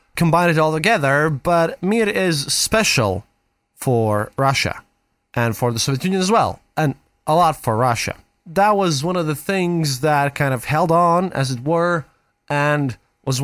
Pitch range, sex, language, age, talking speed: 120-170 Hz, male, English, 20-39, 170 wpm